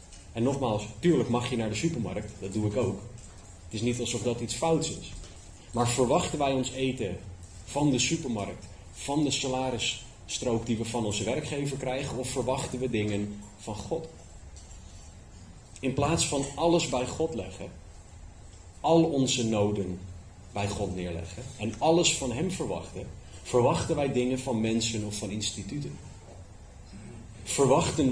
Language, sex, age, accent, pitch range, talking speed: Dutch, male, 30-49, Dutch, 95-125 Hz, 150 wpm